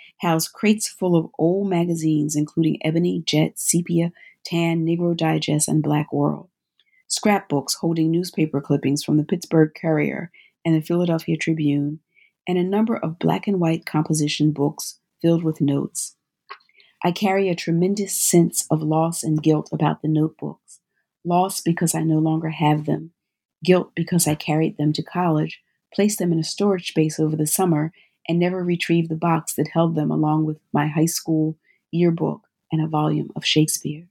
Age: 40-59